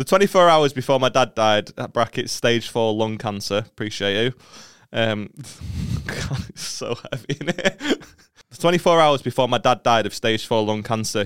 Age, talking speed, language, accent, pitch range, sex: 20-39, 170 wpm, English, British, 100-120 Hz, male